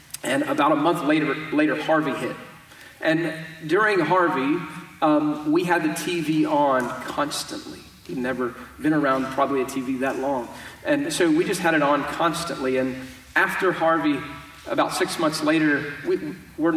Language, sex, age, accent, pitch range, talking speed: English, male, 30-49, American, 135-170 Hz, 155 wpm